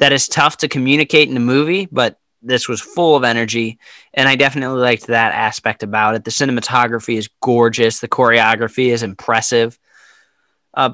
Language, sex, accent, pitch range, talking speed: English, male, American, 115-135 Hz, 170 wpm